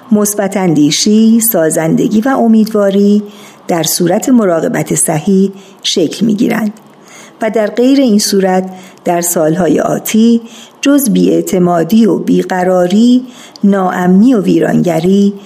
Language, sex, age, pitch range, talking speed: Persian, female, 50-69, 185-230 Hz, 95 wpm